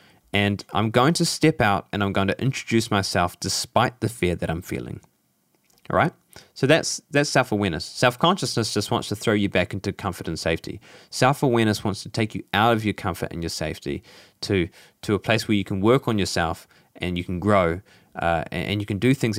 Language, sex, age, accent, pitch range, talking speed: English, male, 20-39, Australian, 95-120 Hz, 205 wpm